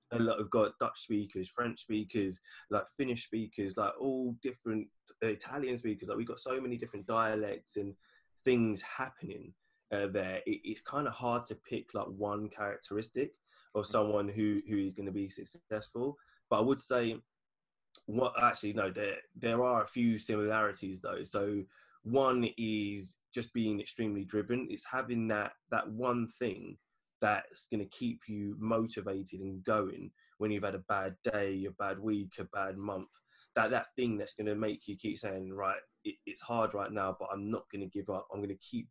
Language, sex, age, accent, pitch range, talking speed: English, male, 20-39, British, 100-120 Hz, 190 wpm